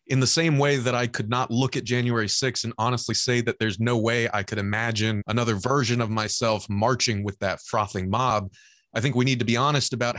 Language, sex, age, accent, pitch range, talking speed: English, male, 30-49, American, 110-135 Hz, 230 wpm